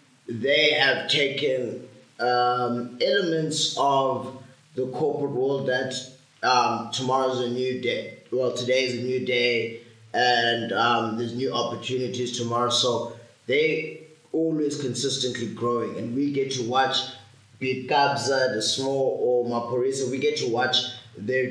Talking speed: 125 wpm